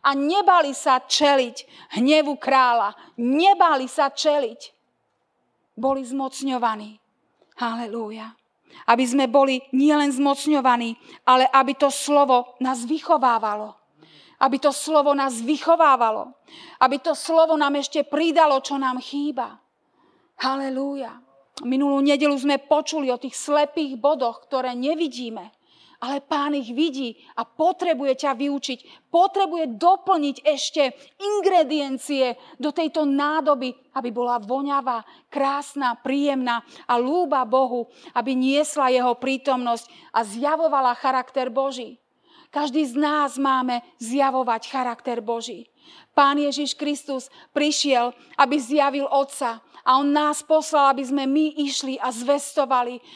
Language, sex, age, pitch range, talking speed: Slovak, female, 40-59, 255-300 Hz, 115 wpm